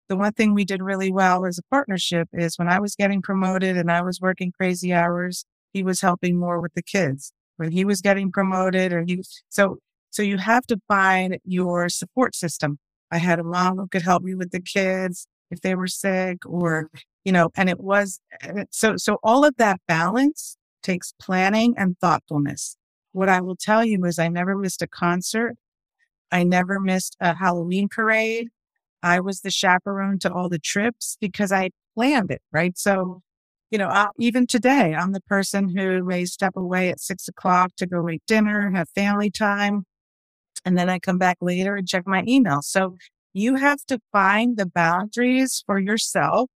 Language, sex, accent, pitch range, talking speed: English, female, American, 180-205 Hz, 190 wpm